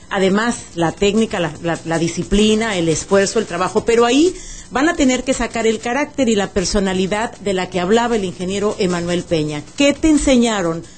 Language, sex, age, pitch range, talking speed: English, female, 40-59, 185-240 Hz, 185 wpm